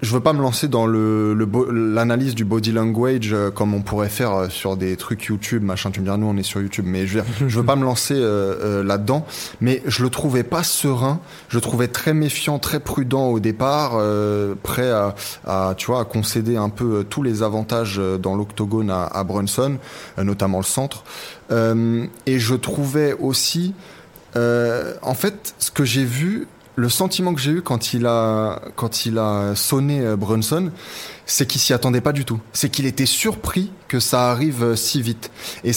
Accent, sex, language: French, male, French